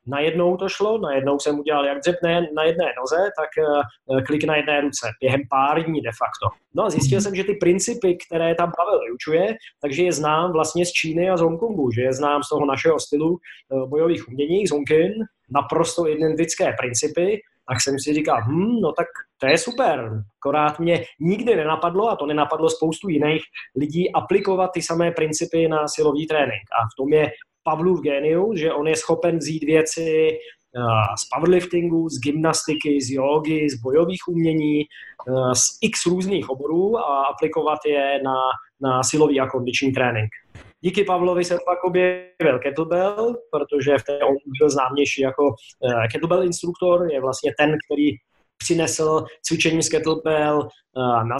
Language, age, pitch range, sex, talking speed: Slovak, 20-39, 140-170 Hz, male, 165 wpm